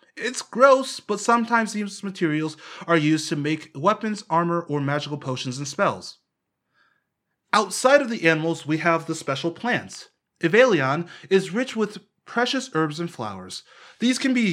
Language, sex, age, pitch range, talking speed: English, male, 30-49, 145-200 Hz, 155 wpm